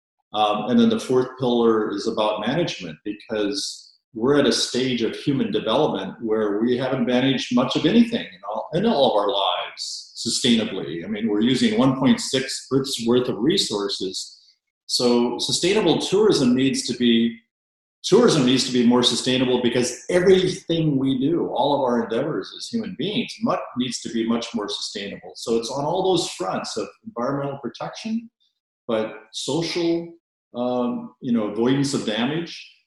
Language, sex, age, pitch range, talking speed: English, male, 40-59, 110-140 Hz, 155 wpm